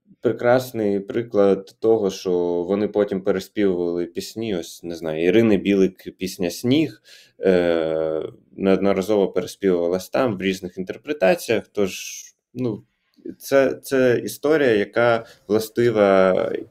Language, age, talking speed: Ukrainian, 20-39, 105 wpm